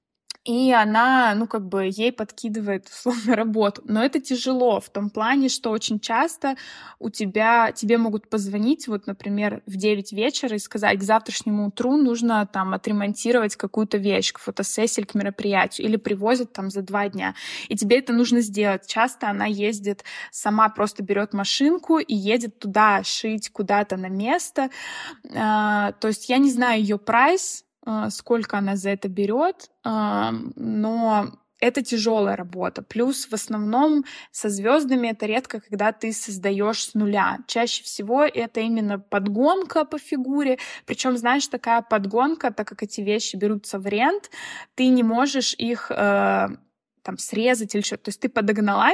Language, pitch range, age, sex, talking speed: Russian, 210-250 Hz, 20-39, female, 155 wpm